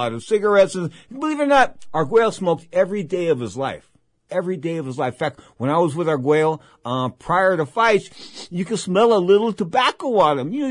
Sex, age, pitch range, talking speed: male, 50-69, 120-180 Hz, 225 wpm